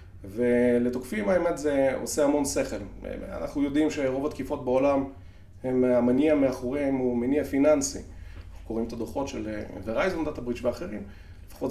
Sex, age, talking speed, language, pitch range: male, 30-49, 140 wpm, Hebrew, 110-145 Hz